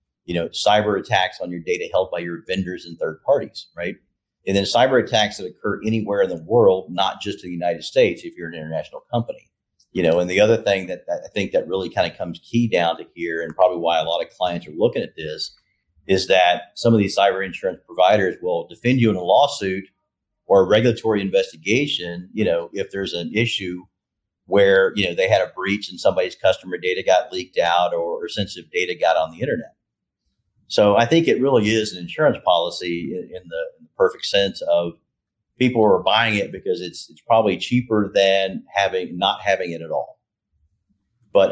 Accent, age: American, 40-59